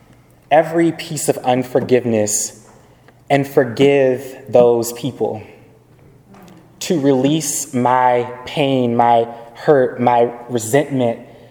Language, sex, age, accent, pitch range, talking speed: English, male, 20-39, American, 115-135 Hz, 85 wpm